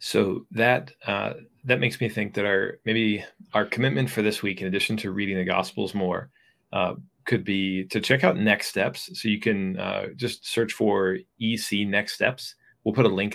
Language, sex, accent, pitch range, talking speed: English, male, American, 95-110 Hz, 200 wpm